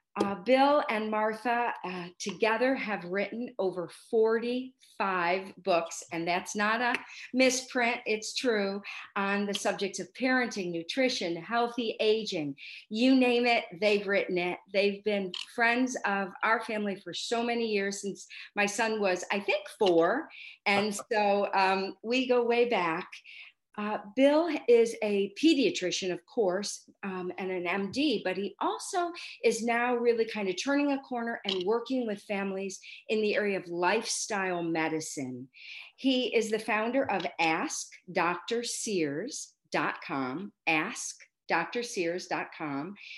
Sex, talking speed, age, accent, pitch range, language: female, 130 wpm, 50-69, American, 190-240 Hz, English